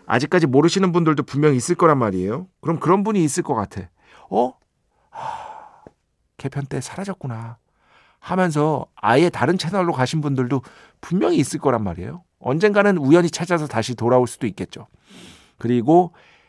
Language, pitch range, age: Korean, 110-160 Hz, 50-69